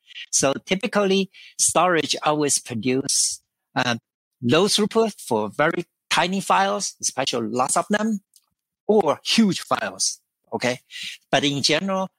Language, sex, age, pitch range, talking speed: English, male, 50-69, 125-195 Hz, 115 wpm